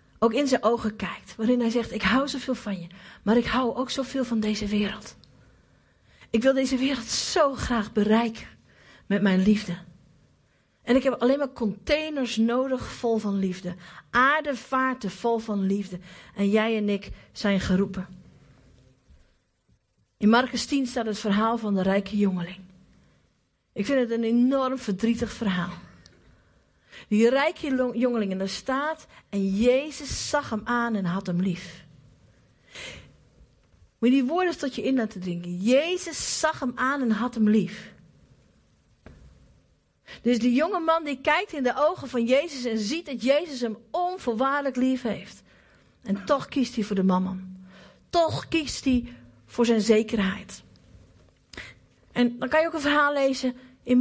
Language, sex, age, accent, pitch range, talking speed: Dutch, female, 50-69, Dutch, 195-265 Hz, 155 wpm